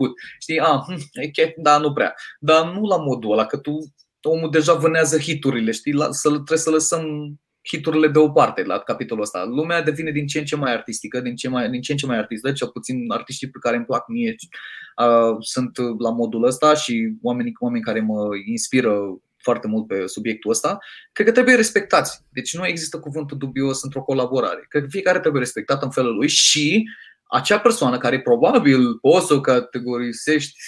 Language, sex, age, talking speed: Romanian, male, 20-39, 190 wpm